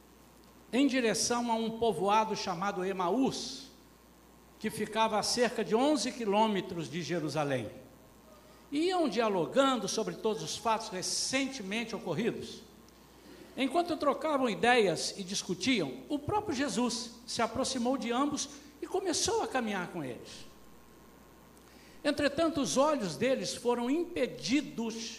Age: 60-79